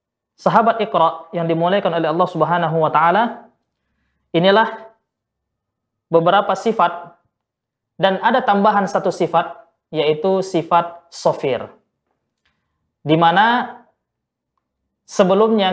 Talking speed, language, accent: 75 wpm, Indonesian, native